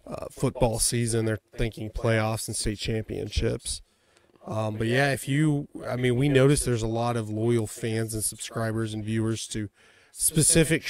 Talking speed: 165 wpm